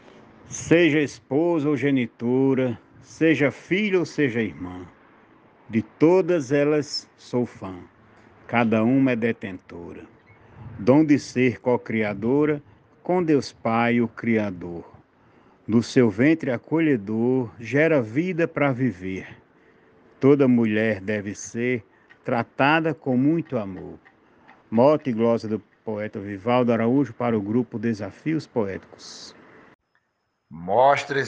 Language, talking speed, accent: Portuguese, 105 wpm, Brazilian